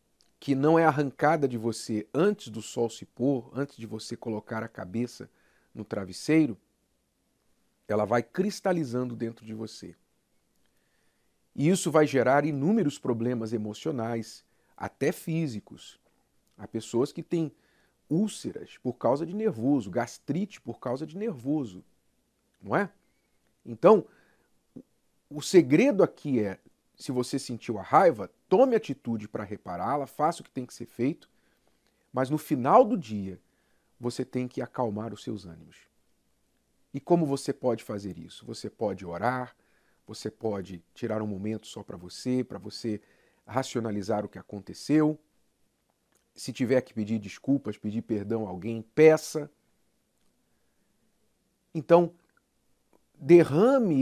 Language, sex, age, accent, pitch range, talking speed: Romanian, male, 50-69, Brazilian, 110-150 Hz, 130 wpm